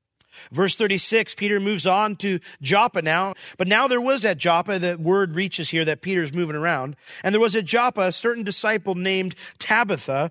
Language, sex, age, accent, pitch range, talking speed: English, male, 40-59, American, 150-205 Hz, 185 wpm